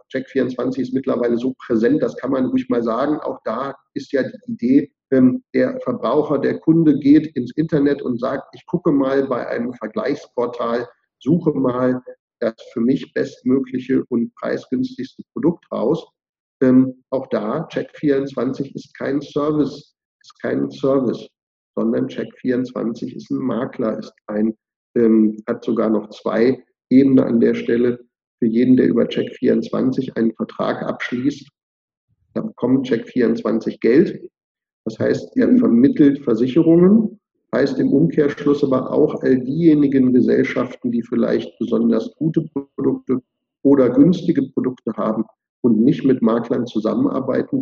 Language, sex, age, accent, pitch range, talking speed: German, male, 50-69, German, 125-150 Hz, 130 wpm